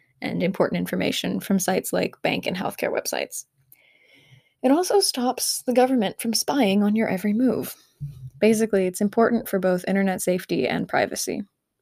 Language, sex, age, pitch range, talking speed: English, female, 20-39, 185-235 Hz, 150 wpm